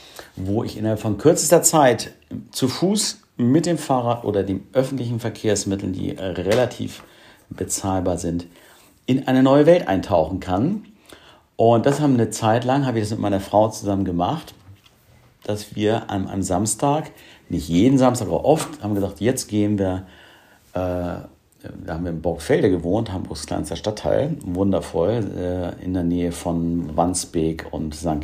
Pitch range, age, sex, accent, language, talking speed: 90-115 Hz, 50-69, male, German, German, 155 wpm